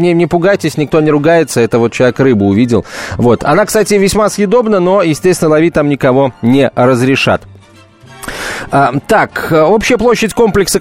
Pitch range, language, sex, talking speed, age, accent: 150-200 Hz, Russian, male, 145 wpm, 30-49, native